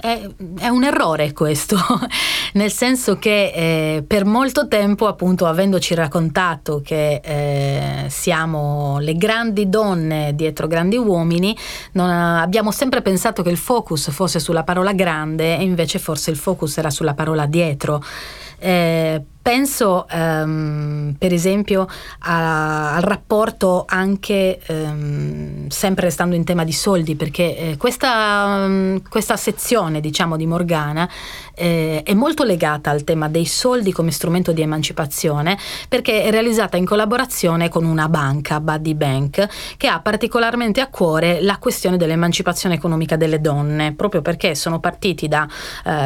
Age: 30-49